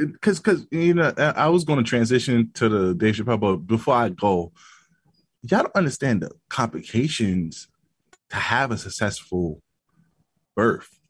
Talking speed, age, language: 145 wpm, 20-39, English